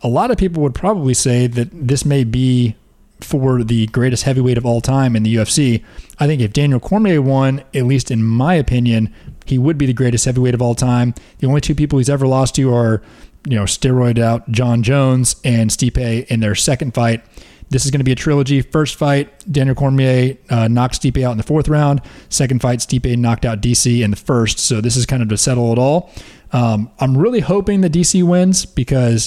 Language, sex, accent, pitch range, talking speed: English, male, American, 110-135 Hz, 220 wpm